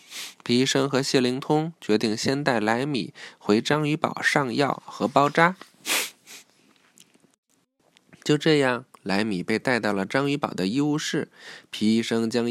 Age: 20-39